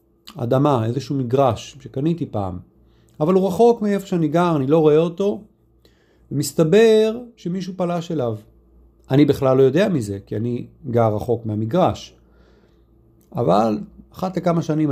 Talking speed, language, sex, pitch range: 135 wpm, Hebrew, male, 110-165 Hz